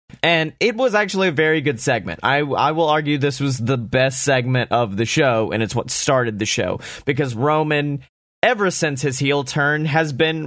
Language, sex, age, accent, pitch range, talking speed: English, male, 30-49, American, 125-150 Hz, 200 wpm